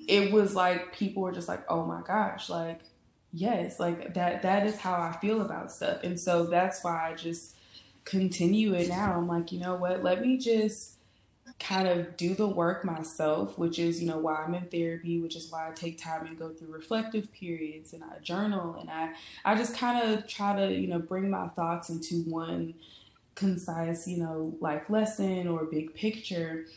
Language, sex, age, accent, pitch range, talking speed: English, female, 20-39, American, 160-185 Hz, 200 wpm